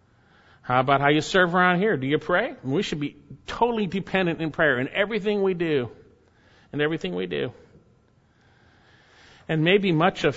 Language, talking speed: English, 170 wpm